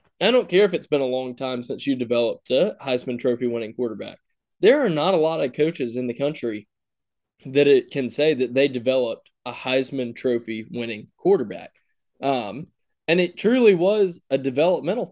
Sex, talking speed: male, 185 wpm